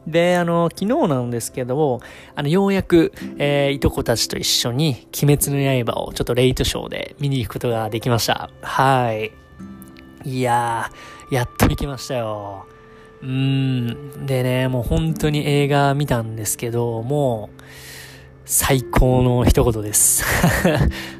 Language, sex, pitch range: Japanese, male, 110-140 Hz